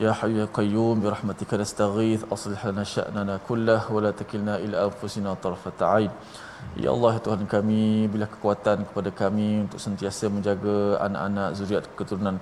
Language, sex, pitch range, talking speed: Malayalam, male, 100-110 Hz, 85 wpm